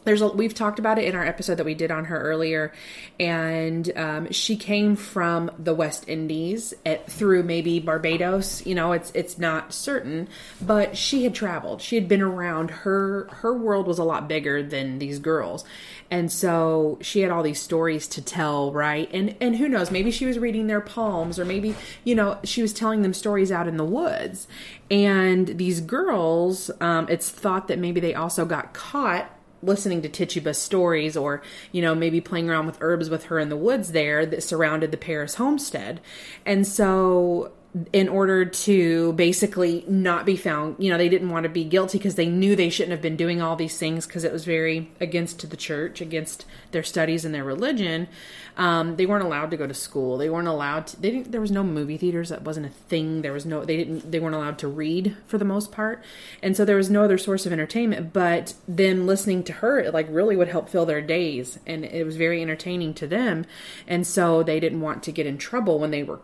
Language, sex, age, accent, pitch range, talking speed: English, female, 20-39, American, 160-195 Hz, 215 wpm